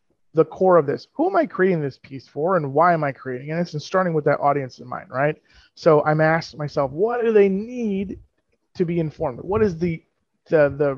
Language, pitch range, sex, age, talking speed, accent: English, 140-170 Hz, male, 30-49, 225 wpm, American